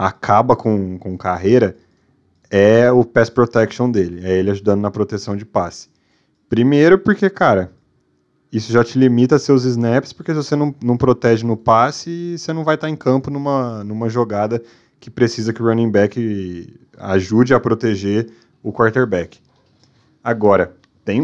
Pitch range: 105-135 Hz